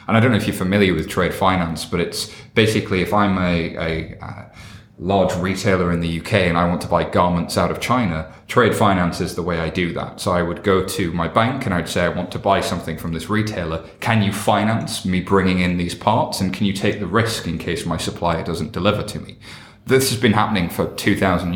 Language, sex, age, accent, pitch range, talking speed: English, male, 30-49, British, 90-105 Hz, 240 wpm